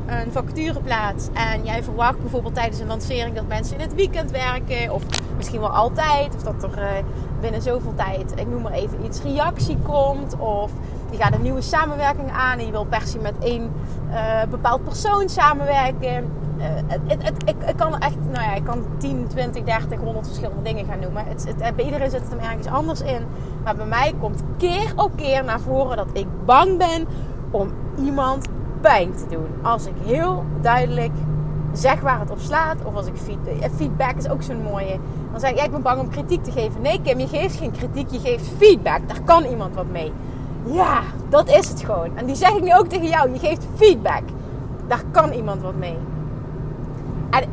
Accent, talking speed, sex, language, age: Dutch, 205 wpm, female, Dutch, 30-49